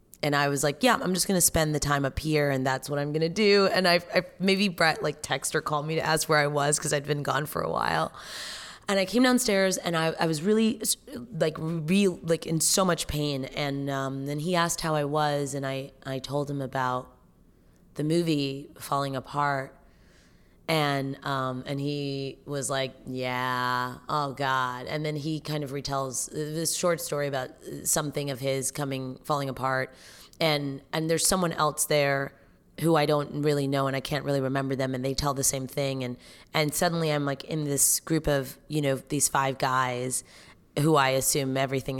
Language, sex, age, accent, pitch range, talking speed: English, female, 20-39, American, 135-160 Hz, 200 wpm